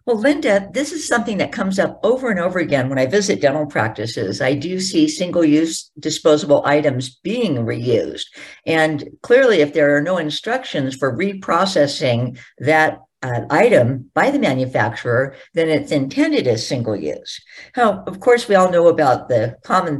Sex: female